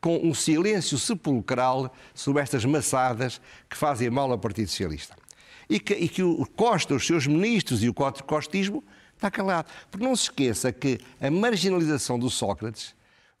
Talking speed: 160 wpm